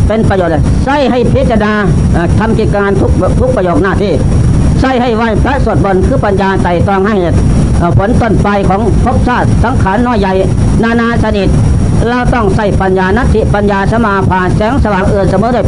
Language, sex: Thai, female